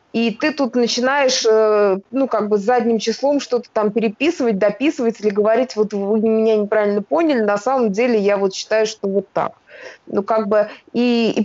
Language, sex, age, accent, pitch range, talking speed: Russian, female, 20-39, native, 210-250 Hz, 180 wpm